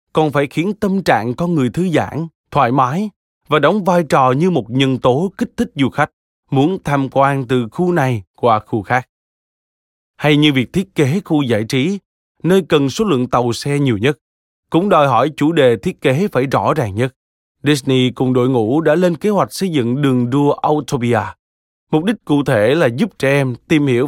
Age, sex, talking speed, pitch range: 20-39, male, 205 wpm, 120-155 Hz